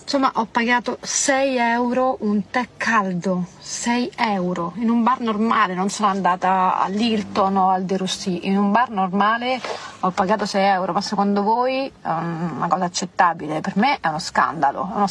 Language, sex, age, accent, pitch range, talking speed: Italian, female, 30-49, native, 165-205 Hz, 175 wpm